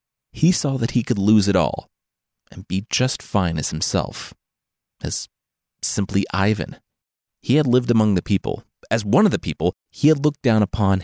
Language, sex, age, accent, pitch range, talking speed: English, male, 30-49, American, 95-125 Hz, 180 wpm